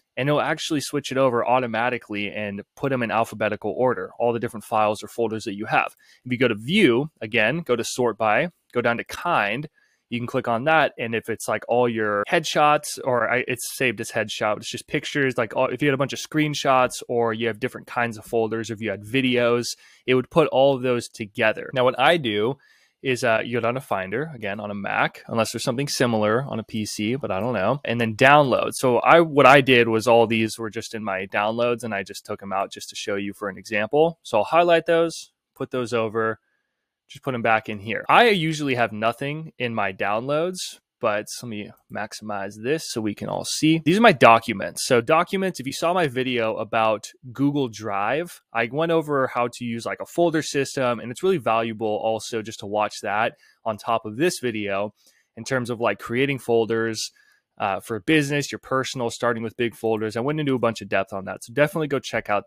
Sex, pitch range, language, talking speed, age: male, 110-140 Hz, English, 225 wpm, 20-39